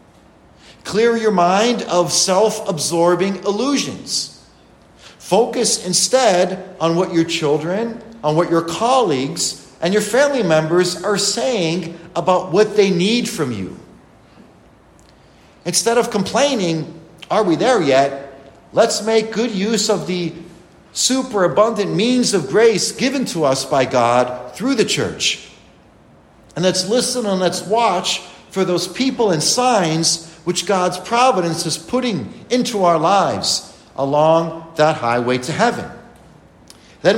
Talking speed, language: 130 wpm, English